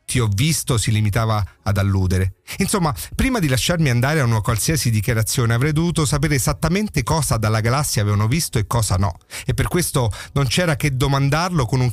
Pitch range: 115-150 Hz